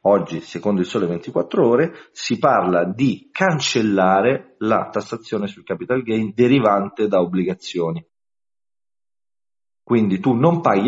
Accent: native